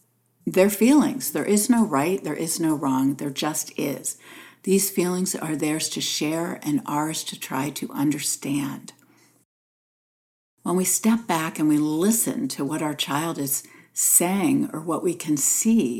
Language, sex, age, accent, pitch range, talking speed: English, female, 60-79, American, 150-210 Hz, 160 wpm